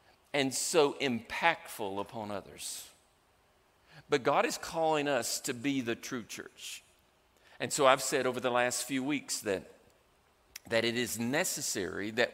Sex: male